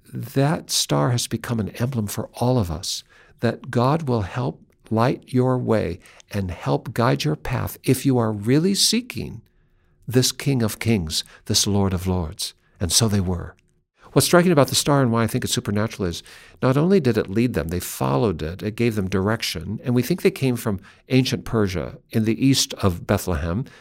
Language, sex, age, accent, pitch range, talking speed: English, male, 60-79, American, 95-135 Hz, 195 wpm